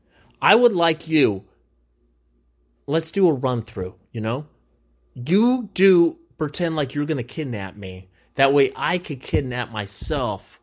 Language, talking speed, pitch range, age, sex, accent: English, 140 wpm, 95-155 Hz, 30-49, male, American